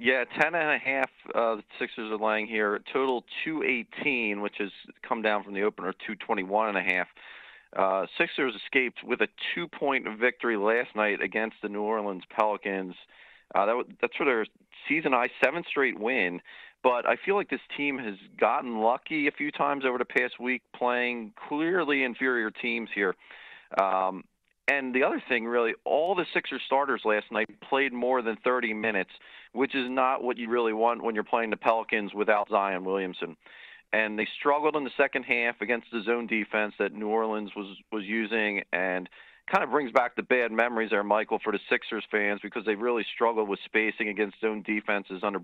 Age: 40-59